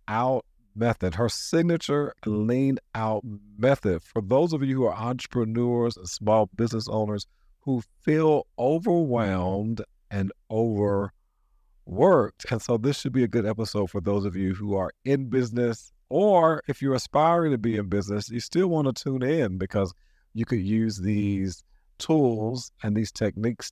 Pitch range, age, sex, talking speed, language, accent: 100-130 Hz, 50-69, male, 155 wpm, English, American